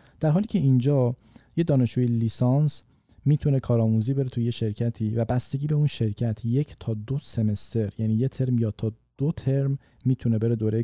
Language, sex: Persian, male